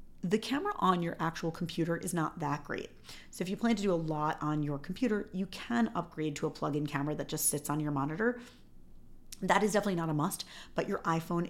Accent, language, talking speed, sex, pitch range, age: American, English, 230 wpm, female, 160-205 Hz, 40-59